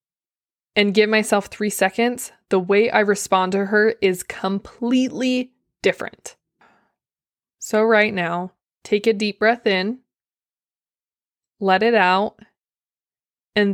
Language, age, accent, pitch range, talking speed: English, 20-39, American, 185-215 Hz, 115 wpm